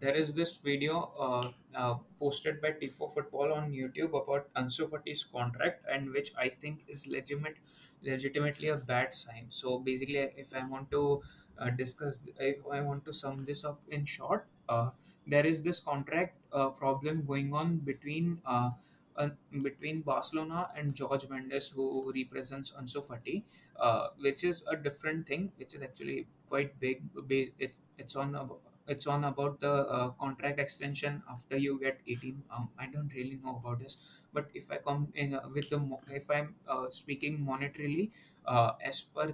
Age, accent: 20-39, Indian